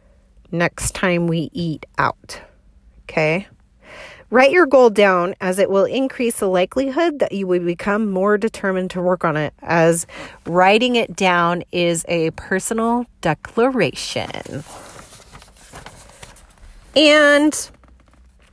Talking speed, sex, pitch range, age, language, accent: 115 wpm, female, 165-230 Hz, 40-59, English, American